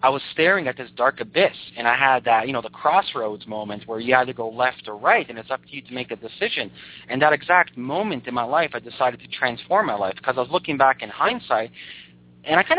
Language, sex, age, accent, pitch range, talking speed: English, male, 30-49, American, 120-155 Hz, 260 wpm